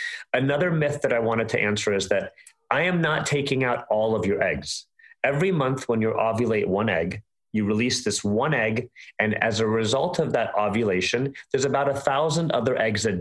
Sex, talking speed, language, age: male, 205 wpm, English, 30-49